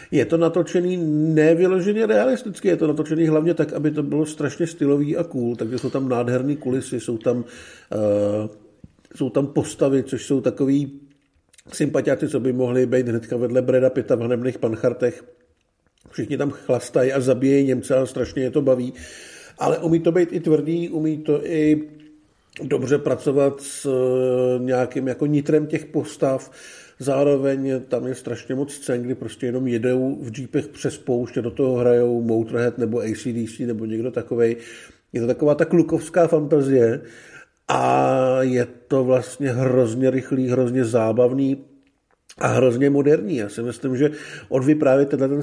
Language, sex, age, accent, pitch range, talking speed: Czech, male, 50-69, native, 125-150 Hz, 155 wpm